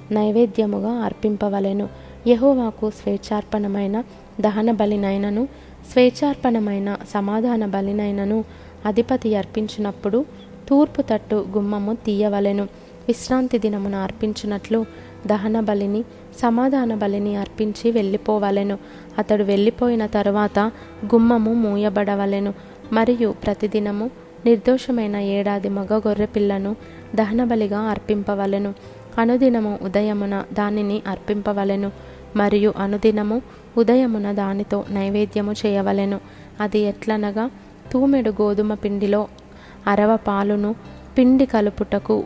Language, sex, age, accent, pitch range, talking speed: Telugu, female, 20-39, native, 205-225 Hz, 75 wpm